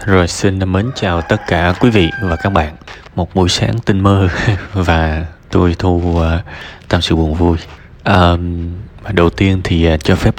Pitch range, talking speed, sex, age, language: 85-105 Hz, 180 wpm, male, 20-39, Vietnamese